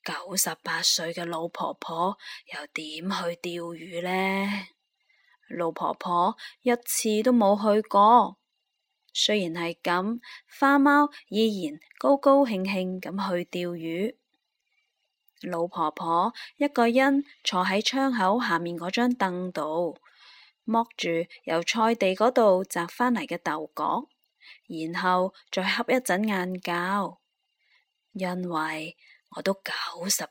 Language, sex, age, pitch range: Chinese, female, 20-39, 175-235 Hz